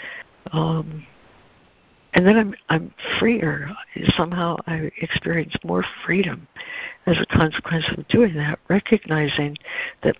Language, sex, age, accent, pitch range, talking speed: English, female, 60-79, American, 160-200 Hz, 110 wpm